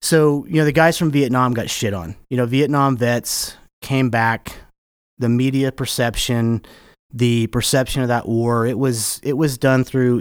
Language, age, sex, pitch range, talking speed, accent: English, 30-49, male, 110-130 Hz, 175 wpm, American